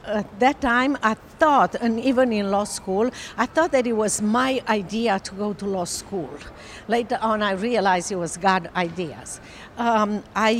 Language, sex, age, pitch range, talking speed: English, female, 50-69, 200-245 Hz, 180 wpm